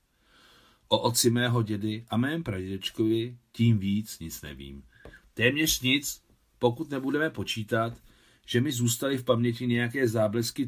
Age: 40-59